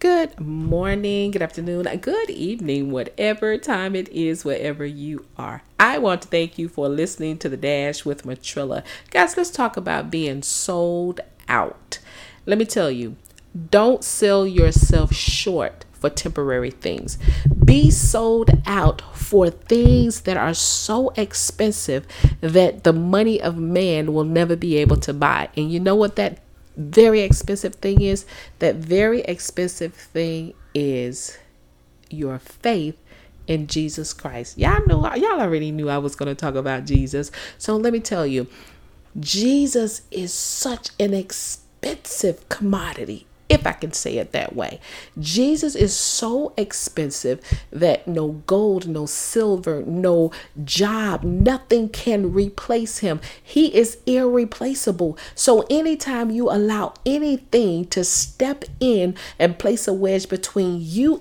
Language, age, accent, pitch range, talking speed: English, 40-59, American, 155-225 Hz, 140 wpm